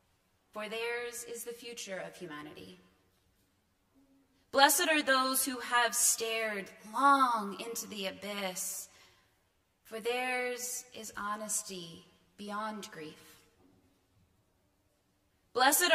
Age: 20-39